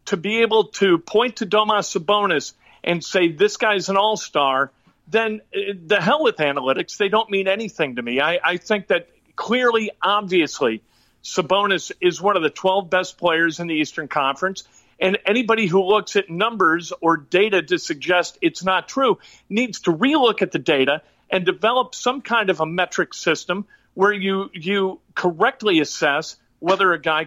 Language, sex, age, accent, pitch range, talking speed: English, male, 50-69, American, 160-205 Hz, 170 wpm